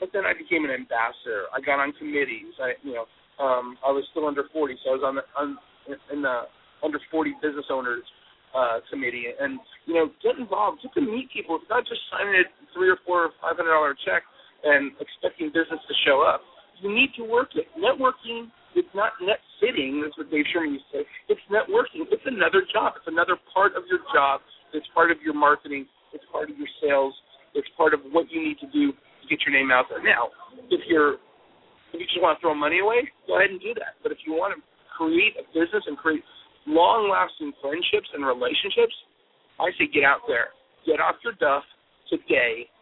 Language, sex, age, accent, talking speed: English, male, 40-59, American, 215 wpm